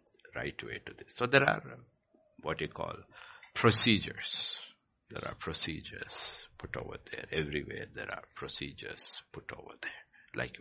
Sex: male